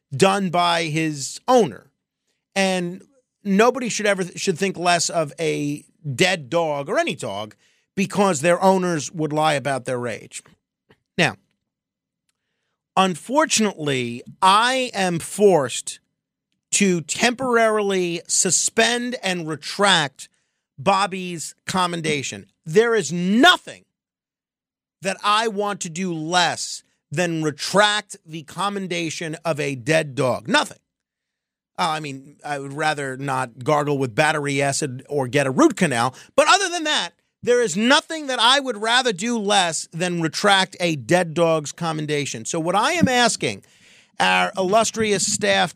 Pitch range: 150-200 Hz